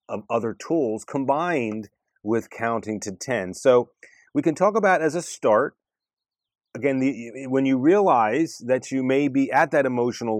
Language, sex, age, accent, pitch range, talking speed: English, male, 30-49, American, 115-140 Hz, 160 wpm